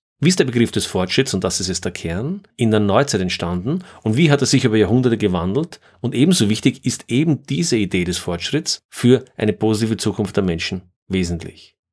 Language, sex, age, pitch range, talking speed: German, male, 40-59, 95-120 Hz, 200 wpm